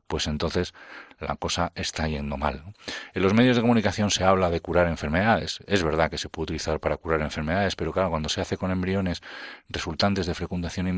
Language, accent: Spanish, Spanish